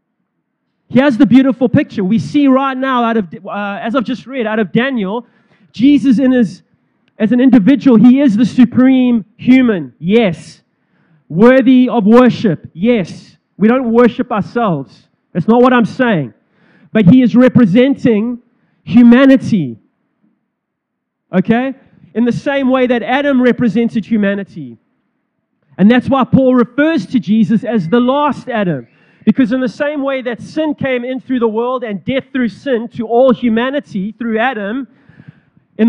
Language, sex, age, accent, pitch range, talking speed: English, male, 30-49, Australian, 200-255 Hz, 150 wpm